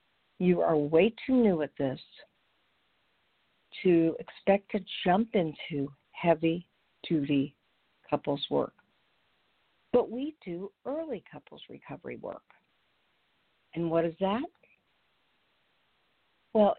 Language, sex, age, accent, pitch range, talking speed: English, female, 50-69, American, 155-210 Hz, 95 wpm